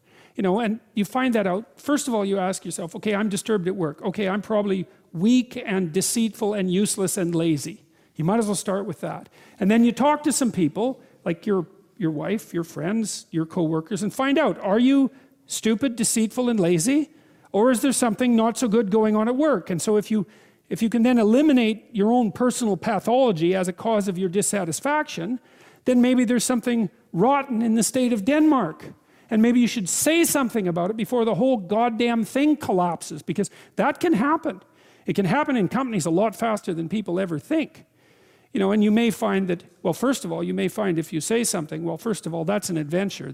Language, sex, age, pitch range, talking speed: English, male, 50-69, 180-240 Hz, 215 wpm